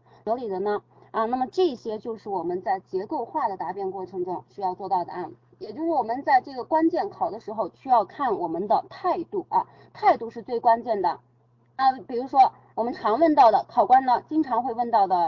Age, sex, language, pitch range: 20-39, female, Chinese, 215-340 Hz